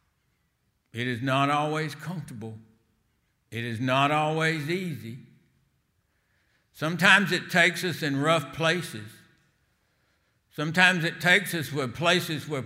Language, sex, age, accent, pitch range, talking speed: English, male, 60-79, American, 115-150 Hz, 115 wpm